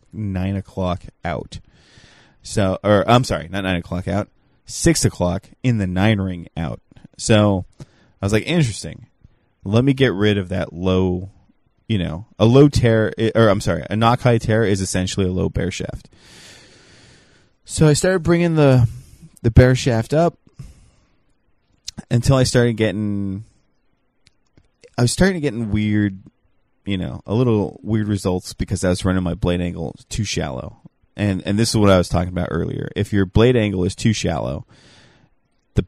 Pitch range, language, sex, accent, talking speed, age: 95-115 Hz, English, male, American, 165 wpm, 20-39